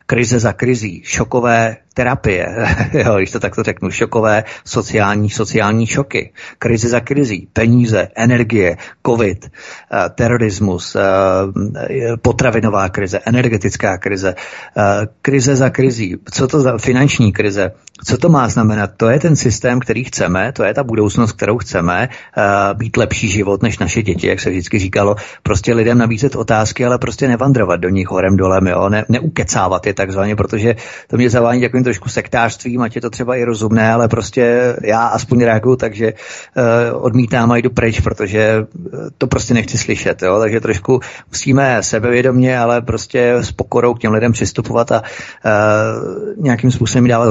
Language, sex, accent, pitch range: Czech, male, native, 105-125 Hz